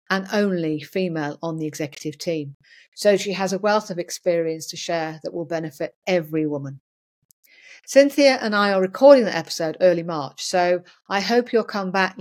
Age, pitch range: 40-59, 160-200 Hz